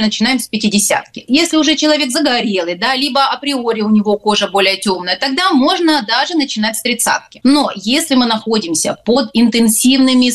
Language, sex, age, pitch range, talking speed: Russian, female, 30-49, 215-280 Hz, 155 wpm